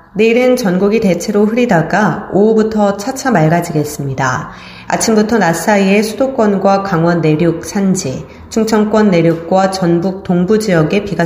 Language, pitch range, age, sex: Korean, 165-215 Hz, 30-49, female